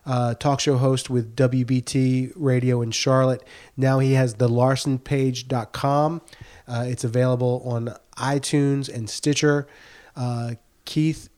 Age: 30-49